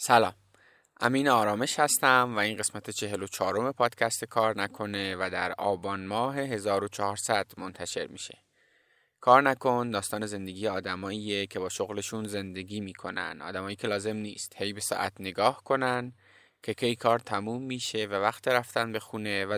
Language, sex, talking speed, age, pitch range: Persian, male, 150 wpm, 20-39, 100-125 Hz